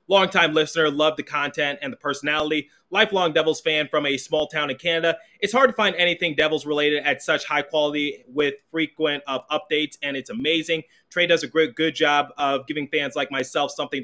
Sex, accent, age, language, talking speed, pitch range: male, American, 20-39, English, 195 wpm, 135-155 Hz